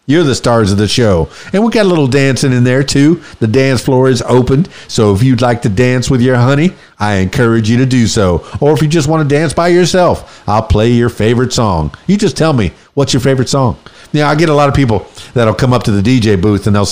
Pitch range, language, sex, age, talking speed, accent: 105-155 Hz, English, male, 50-69, 260 wpm, American